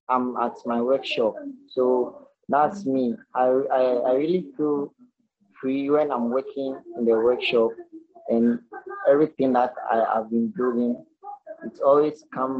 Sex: male